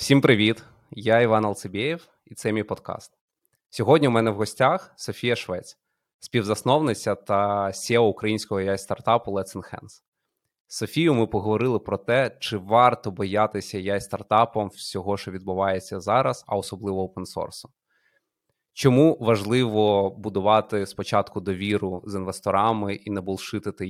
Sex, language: male, Ukrainian